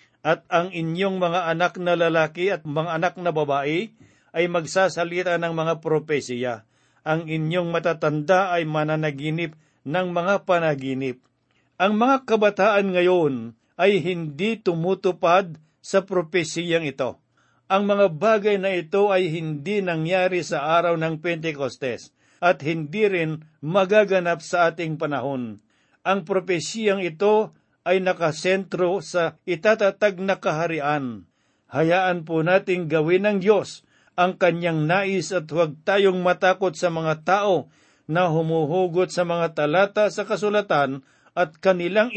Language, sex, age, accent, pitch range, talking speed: Filipino, male, 50-69, native, 160-190 Hz, 125 wpm